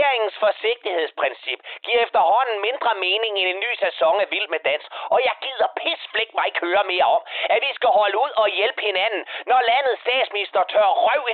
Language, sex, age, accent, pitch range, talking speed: Danish, male, 30-49, native, 195-270 Hz, 195 wpm